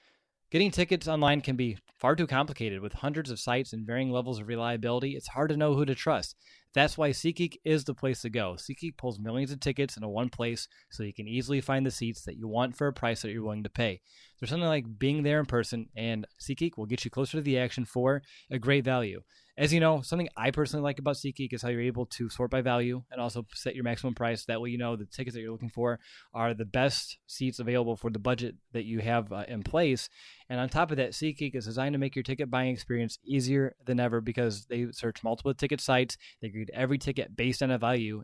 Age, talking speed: 20-39, 245 wpm